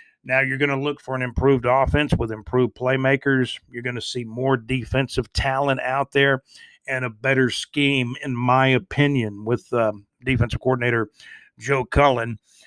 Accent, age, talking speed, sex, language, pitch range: American, 50-69, 160 wpm, male, English, 120-140 Hz